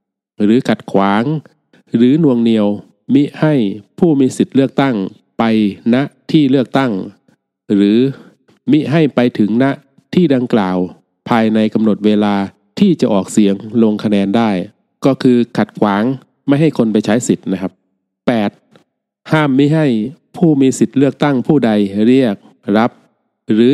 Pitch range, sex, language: 100-130 Hz, male, Thai